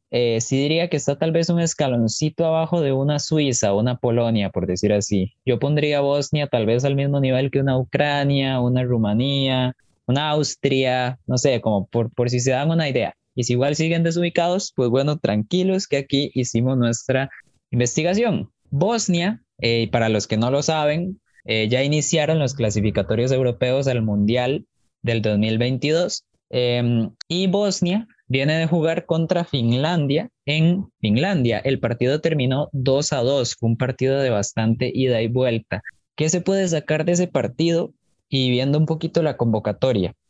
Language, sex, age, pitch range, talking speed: Spanish, male, 20-39, 120-160 Hz, 170 wpm